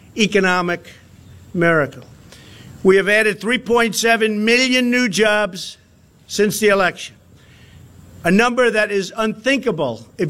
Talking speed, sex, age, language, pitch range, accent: 105 wpm, male, 50-69, English, 170-220 Hz, American